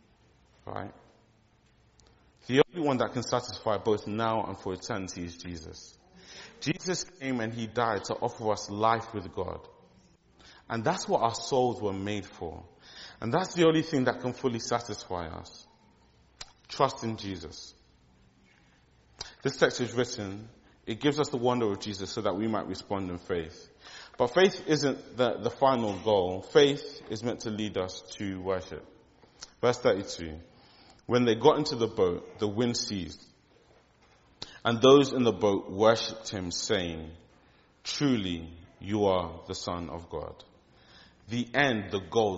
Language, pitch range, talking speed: English, 95-125 Hz, 155 wpm